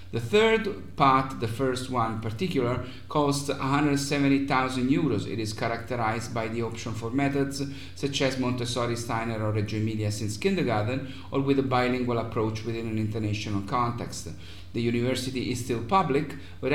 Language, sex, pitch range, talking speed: English, male, 110-135 Hz, 155 wpm